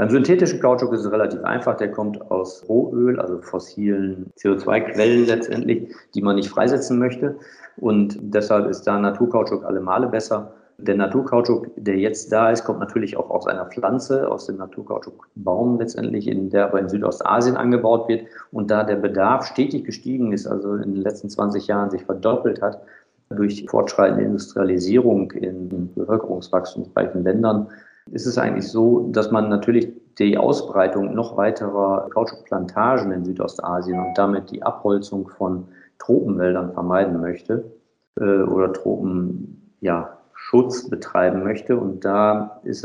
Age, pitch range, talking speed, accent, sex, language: 50-69, 95-110 Hz, 145 wpm, German, male, German